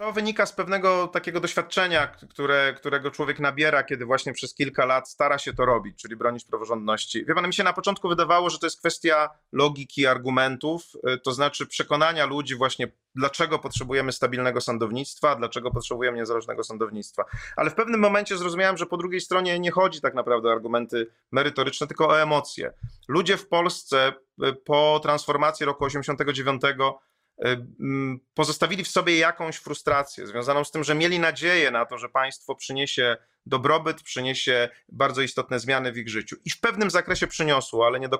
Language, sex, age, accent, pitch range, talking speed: Polish, male, 30-49, native, 130-170 Hz, 165 wpm